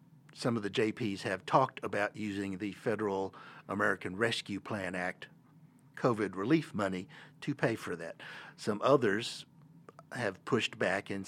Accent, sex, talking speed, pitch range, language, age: American, male, 145 wpm, 100-145 Hz, English, 60-79